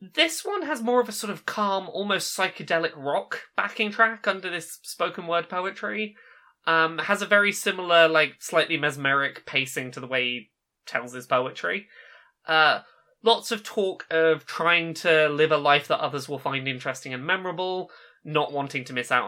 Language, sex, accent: English, male, British